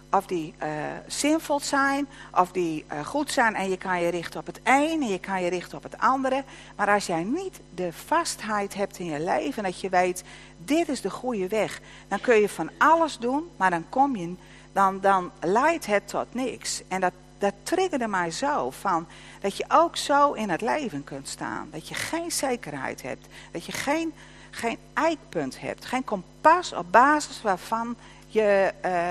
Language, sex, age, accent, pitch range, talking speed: Dutch, female, 50-69, Dutch, 170-275 Hz, 195 wpm